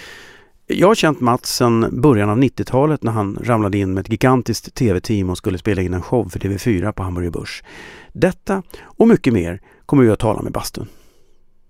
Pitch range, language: 100-125 Hz, Swedish